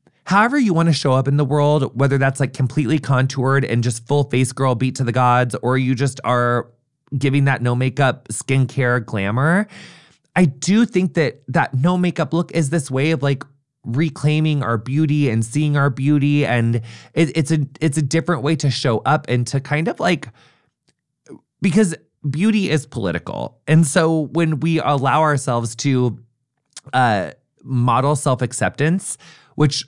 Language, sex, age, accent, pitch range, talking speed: English, male, 20-39, American, 115-150 Hz, 170 wpm